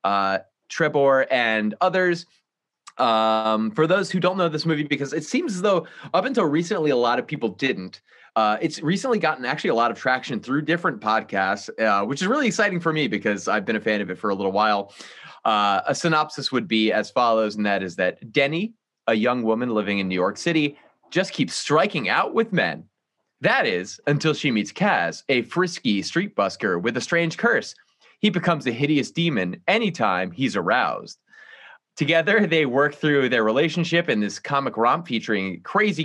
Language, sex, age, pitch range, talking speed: English, male, 30-49, 110-165 Hz, 190 wpm